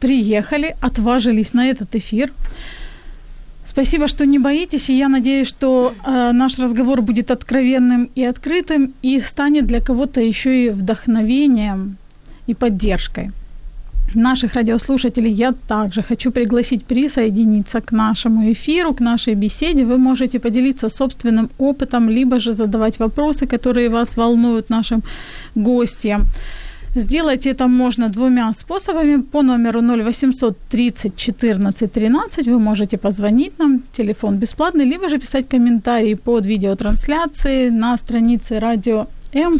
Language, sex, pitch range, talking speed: Ukrainian, female, 225-265 Hz, 125 wpm